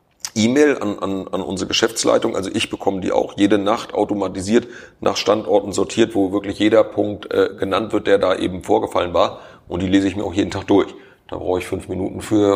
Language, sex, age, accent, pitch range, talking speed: German, male, 40-59, German, 95-105 Hz, 210 wpm